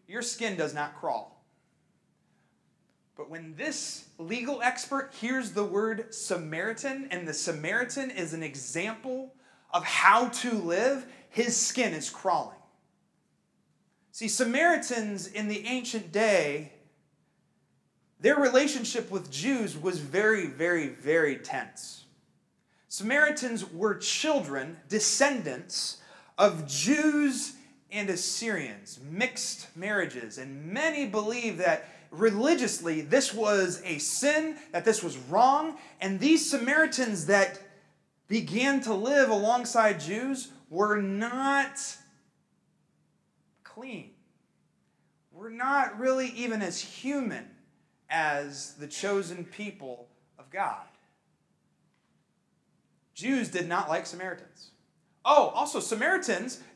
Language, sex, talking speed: English, male, 105 wpm